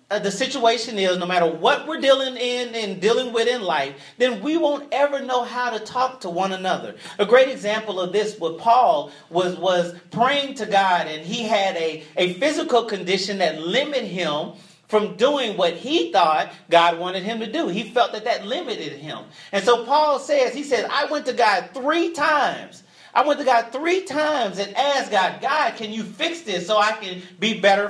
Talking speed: 200 wpm